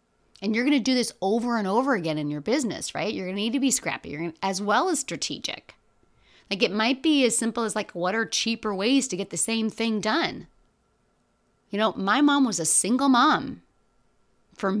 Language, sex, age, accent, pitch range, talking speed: English, female, 30-49, American, 180-250 Hz, 220 wpm